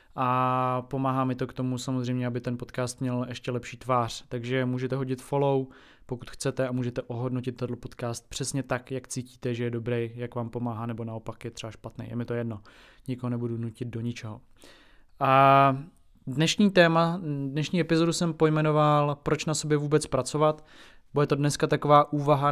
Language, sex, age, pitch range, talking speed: Czech, male, 20-39, 125-145 Hz, 180 wpm